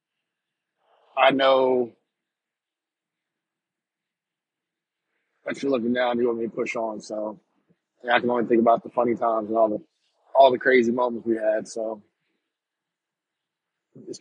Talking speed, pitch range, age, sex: 140 wpm, 115-130 Hz, 30-49, male